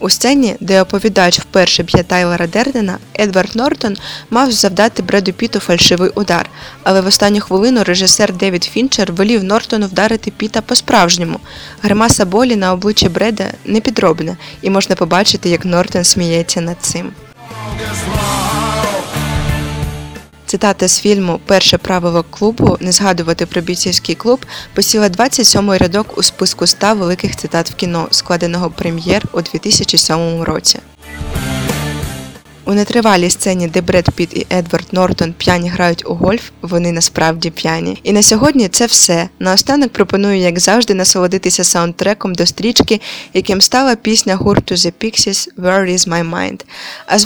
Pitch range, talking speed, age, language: 170-210 Hz, 140 wpm, 20-39, Russian